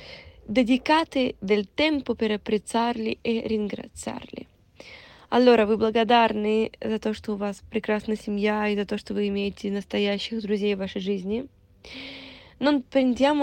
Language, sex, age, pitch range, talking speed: Italian, female, 20-39, 210-250 Hz, 130 wpm